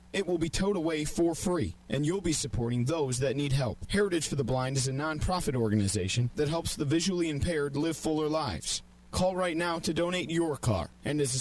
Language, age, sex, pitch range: English, 40-59, male, 110-180 Hz